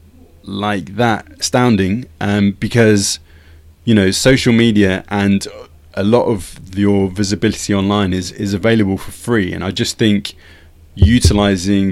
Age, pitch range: 20-39, 95-115 Hz